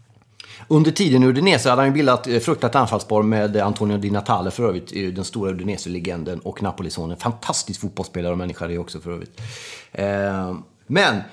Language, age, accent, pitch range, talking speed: Swedish, 30-49, native, 100-125 Hz, 170 wpm